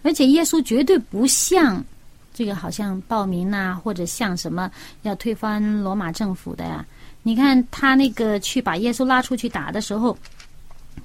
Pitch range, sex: 225-320 Hz, female